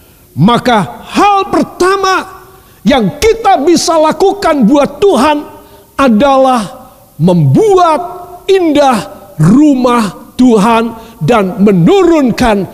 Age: 50-69